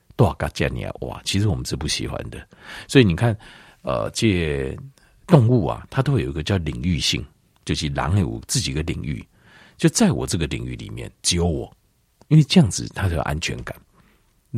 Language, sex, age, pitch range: Chinese, male, 50-69, 80-125 Hz